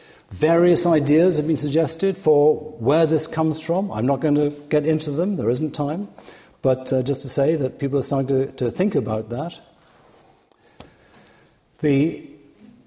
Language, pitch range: English, 120-155 Hz